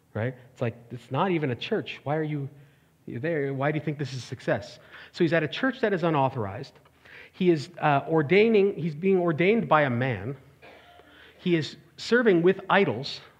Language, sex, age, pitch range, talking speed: English, male, 40-59, 130-185 Hz, 195 wpm